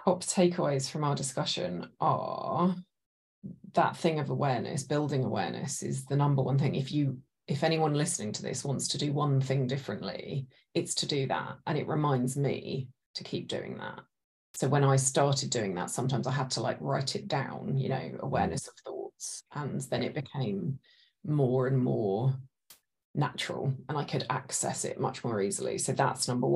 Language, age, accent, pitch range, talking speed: English, 30-49, British, 135-170 Hz, 180 wpm